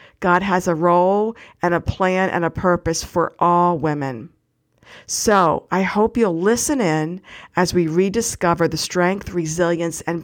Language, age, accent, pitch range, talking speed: English, 50-69, American, 175-225 Hz, 150 wpm